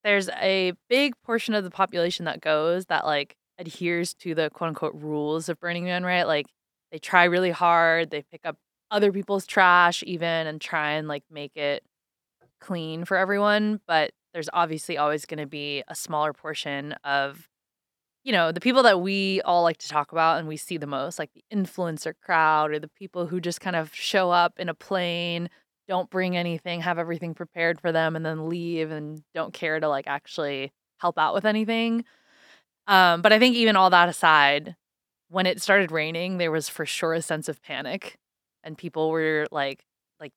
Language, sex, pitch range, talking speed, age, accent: English, female, 150-180 Hz, 195 wpm, 20-39, American